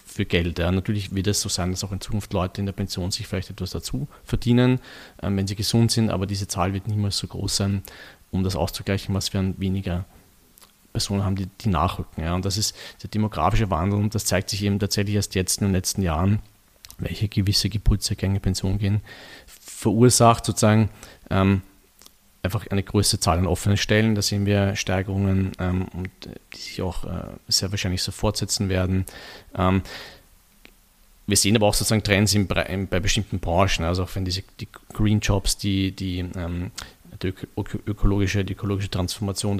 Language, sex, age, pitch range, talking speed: German, male, 40-59, 95-105 Hz, 180 wpm